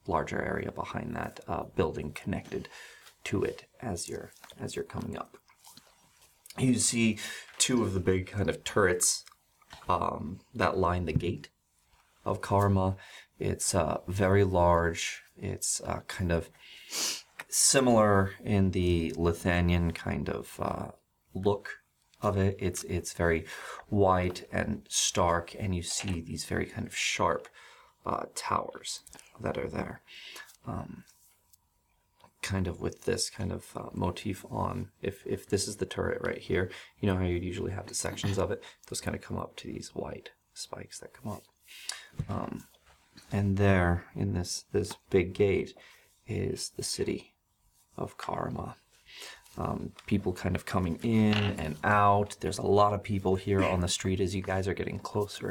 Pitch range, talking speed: 85-100 Hz, 155 wpm